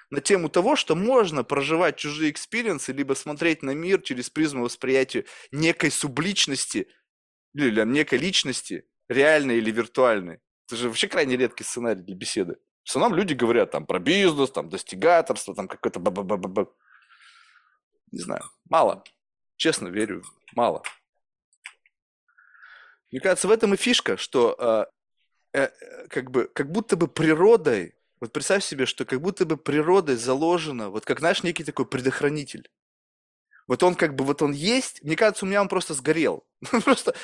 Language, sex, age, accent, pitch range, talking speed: Russian, male, 20-39, native, 130-195 Hz, 150 wpm